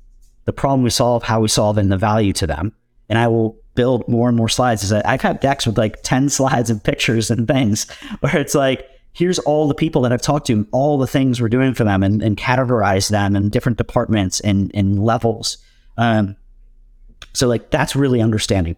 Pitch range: 95-120 Hz